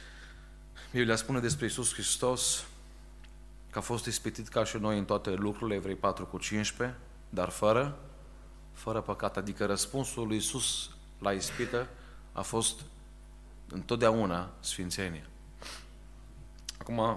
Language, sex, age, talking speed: Romanian, male, 30-49, 120 wpm